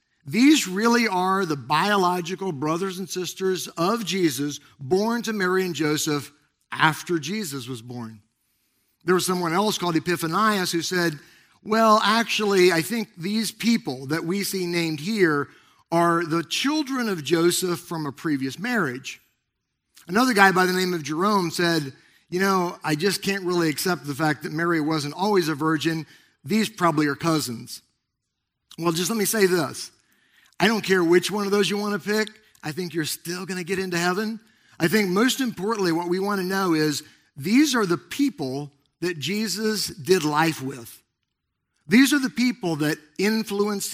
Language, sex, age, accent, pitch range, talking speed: English, male, 50-69, American, 150-195 Hz, 170 wpm